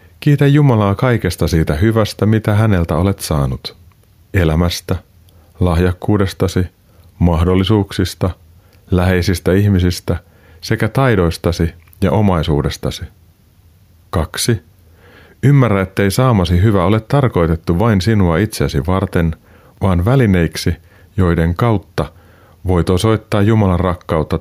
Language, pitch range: Finnish, 85-105 Hz